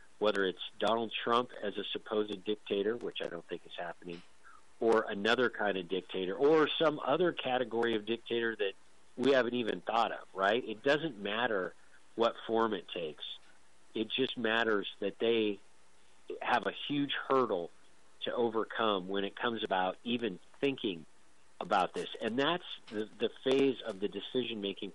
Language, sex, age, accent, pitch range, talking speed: English, male, 50-69, American, 100-125 Hz, 160 wpm